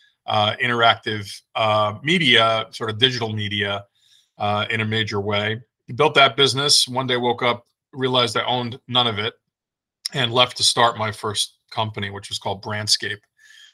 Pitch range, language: 110-125 Hz, English